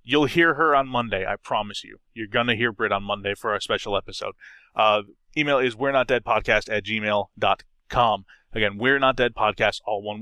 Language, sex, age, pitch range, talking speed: English, male, 20-39, 110-135 Hz, 215 wpm